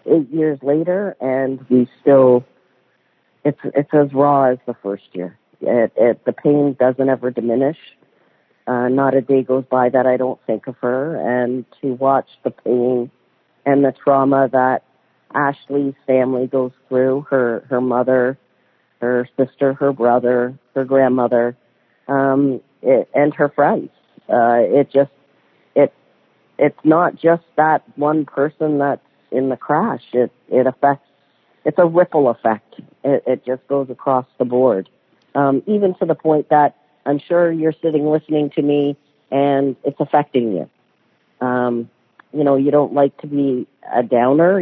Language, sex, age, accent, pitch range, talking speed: English, female, 40-59, American, 125-145 Hz, 150 wpm